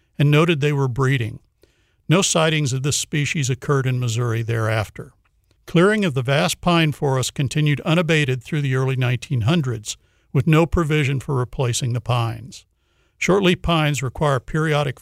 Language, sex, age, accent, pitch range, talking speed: English, male, 60-79, American, 125-155 Hz, 150 wpm